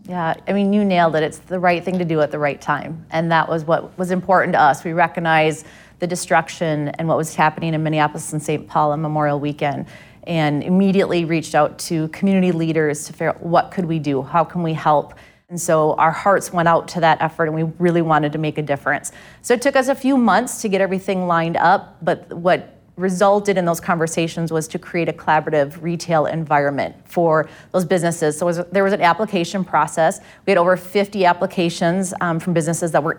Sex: female